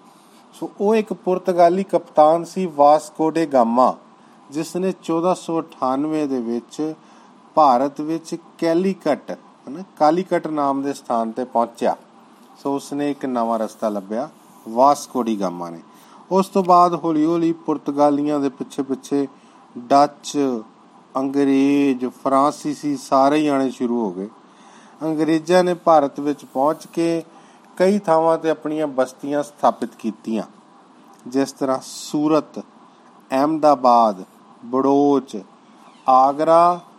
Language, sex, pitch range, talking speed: Punjabi, male, 135-170 Hz, 105 wpm